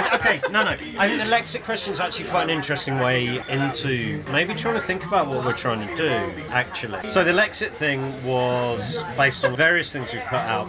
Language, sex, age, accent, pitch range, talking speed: English, male, 30-49, British, 130-170 Hz, 215 wpm